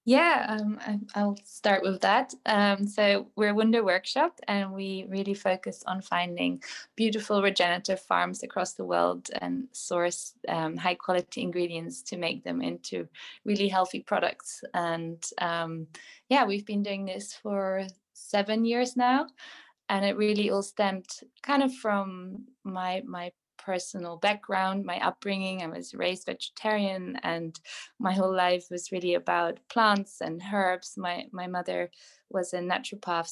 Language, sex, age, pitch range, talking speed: English, female, 20-39, 170-205 Hz, 145 wpm